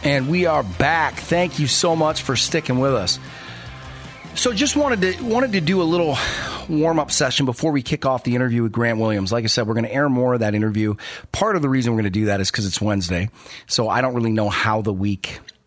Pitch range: 110-150 Hz